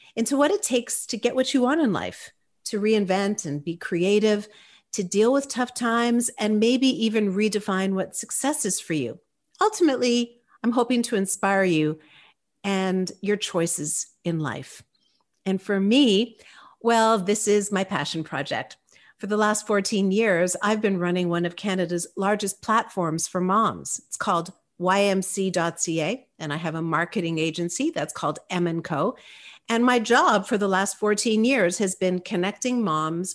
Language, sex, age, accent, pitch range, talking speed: English, female, 50-69, American, 175-225 Hz, 160 wpm